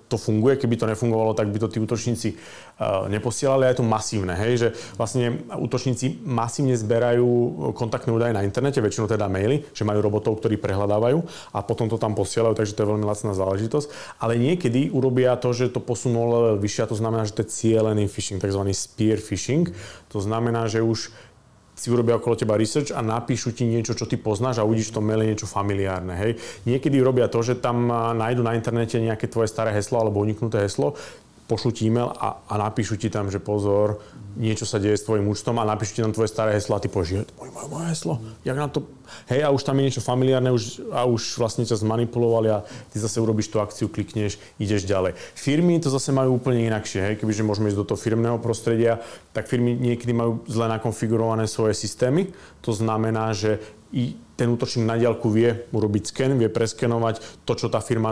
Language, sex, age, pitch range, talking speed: Slovak, male, 30-49, 105-120 Hz, 200 wpm